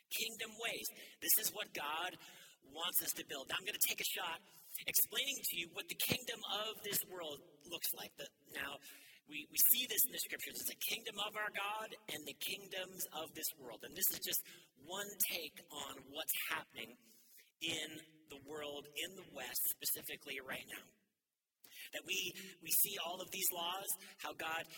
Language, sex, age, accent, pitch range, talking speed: English, male, 40-59, American, 155-210 Hz, 185 wpm